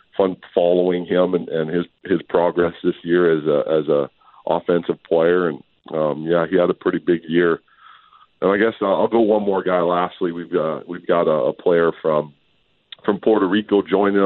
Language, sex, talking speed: English, male, 195 wpm